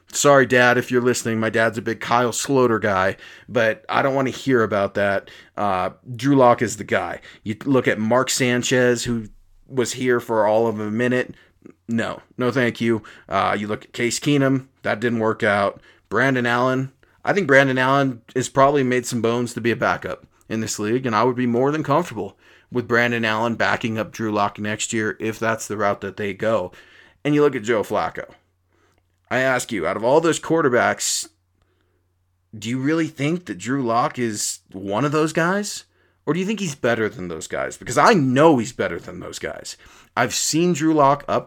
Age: 30-49